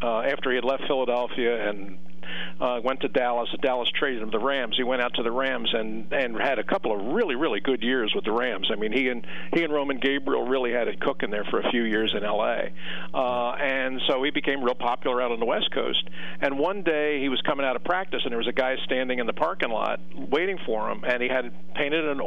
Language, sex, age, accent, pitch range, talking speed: English, male, 50-69, American, 110-145 Hz, 255 wpm